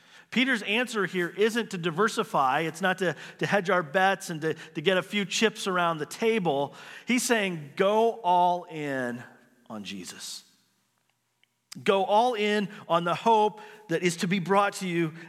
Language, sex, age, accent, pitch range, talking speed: English, male, 40-59, American, 175-225 Hz, 170 wpm